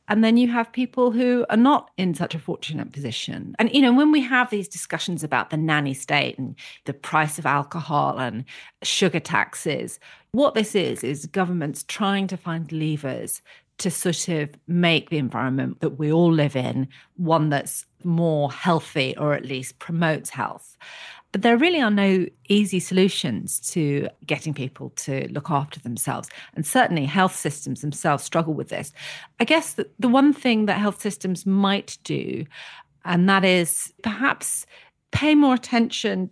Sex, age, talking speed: female, 40-59, 165 wpm